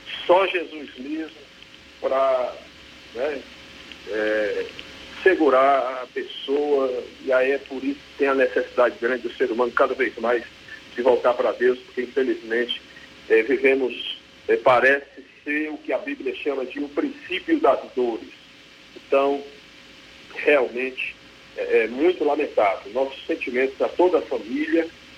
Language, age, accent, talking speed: Portuguese, 40-59, Brazilian, 140 wpm